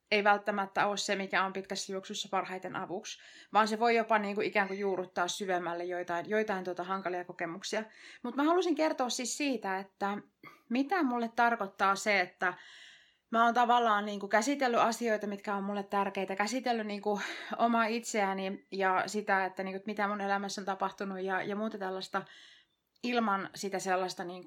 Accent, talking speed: native, 175 wpm